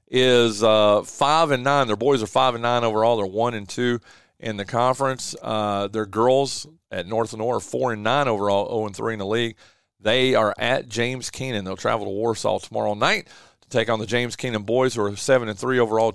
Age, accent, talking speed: 40-59, American, 225 wpm